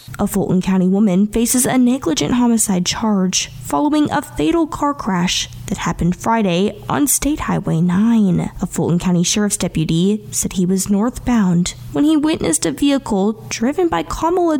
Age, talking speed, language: 10-29, 155 wpm, English